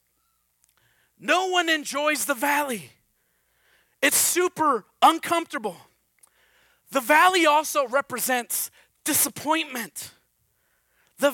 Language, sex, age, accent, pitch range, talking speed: English, male, 30-49, American, 210-295 Hz, 75 wpm